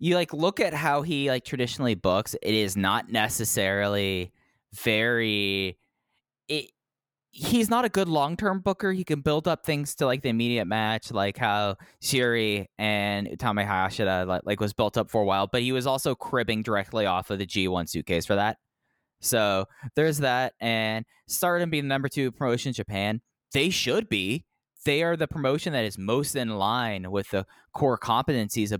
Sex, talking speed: male, 175 wpm